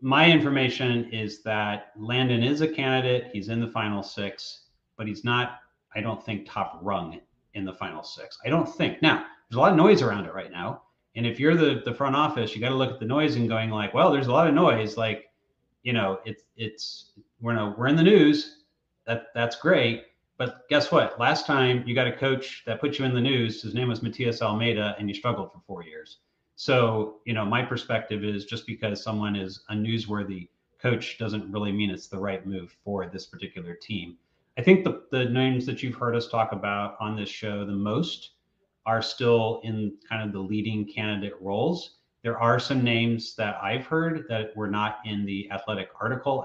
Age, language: 30-49, English